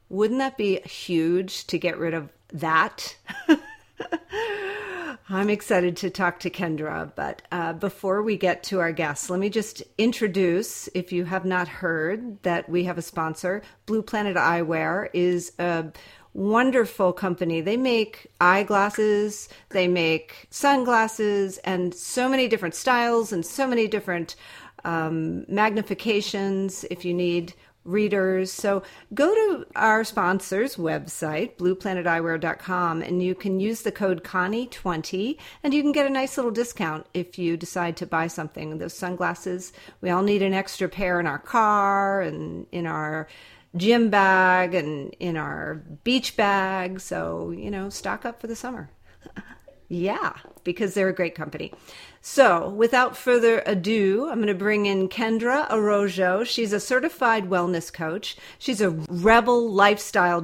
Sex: female